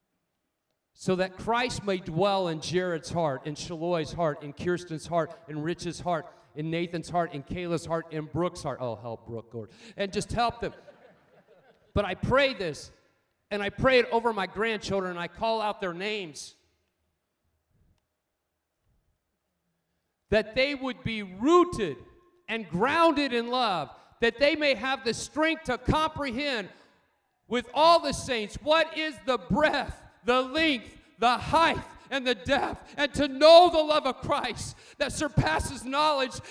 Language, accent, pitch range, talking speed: English, American, 175-290 Hz, 155 wpm